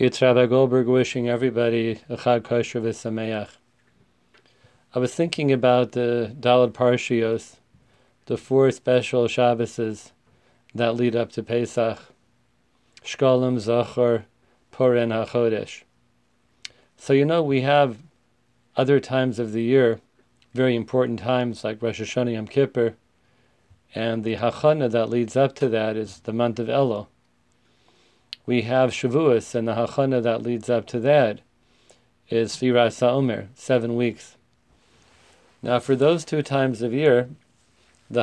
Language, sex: English, male